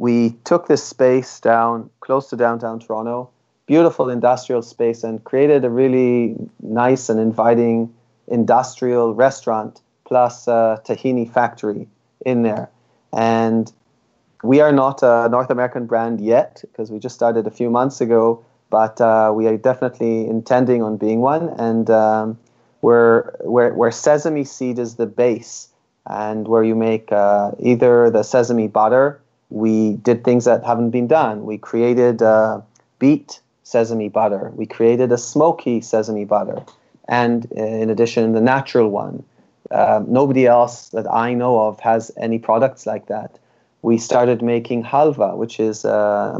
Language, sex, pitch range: English, male, 115-125 Hz